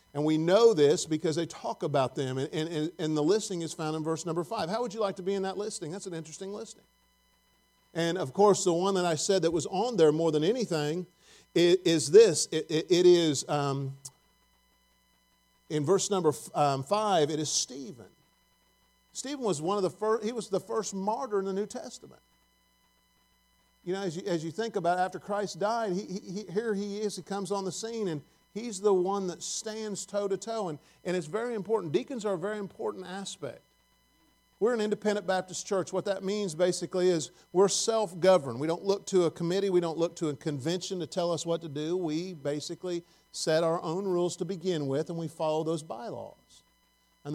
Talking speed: 205 wpm